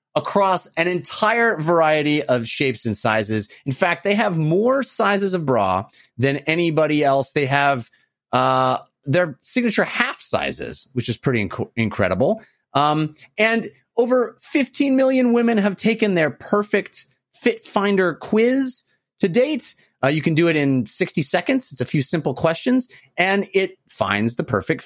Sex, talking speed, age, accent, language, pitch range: male, 155 wpm, 30-49, American, English, 135-210 Hz